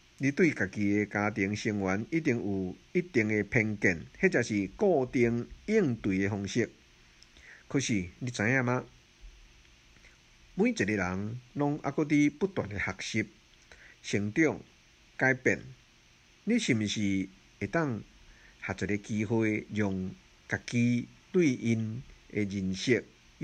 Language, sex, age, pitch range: Chinese, male, 50-69, 90-135 Hz